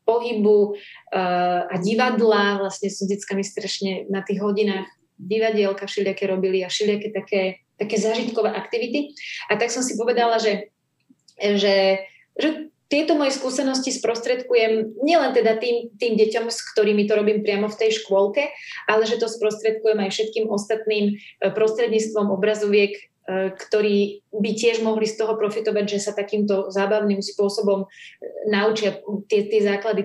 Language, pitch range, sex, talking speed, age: Slovak, 200-230 Hz, female, 140 wpm, 30-49